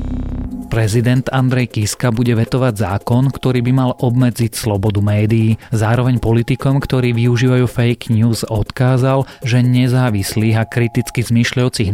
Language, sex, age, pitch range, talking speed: Slovak, male, 30-49, 105-125 Hz, 120 wpm